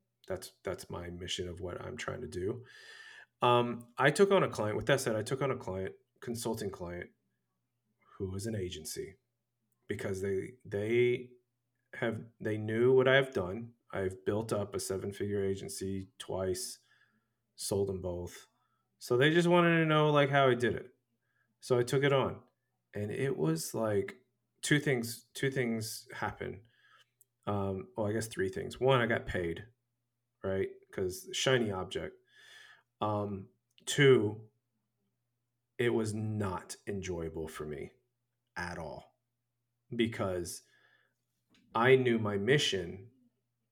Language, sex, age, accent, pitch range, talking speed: English, male, 30-49, American, 105-130 Hz, 145 wpm